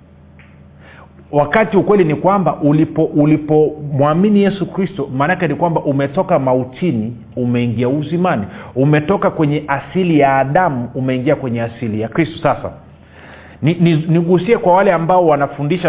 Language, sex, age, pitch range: Swahili, male, 40-59, 115-160 Hz